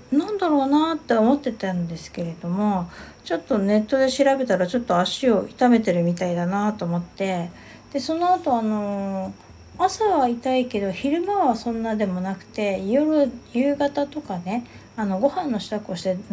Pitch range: 190-280 Hz